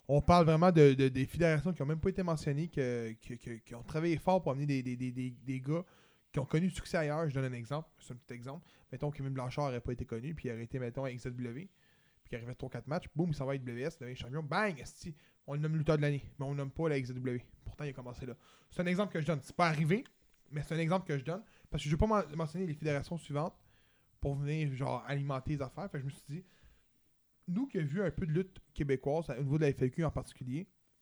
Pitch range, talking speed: 135-180 Hz, 275 wpm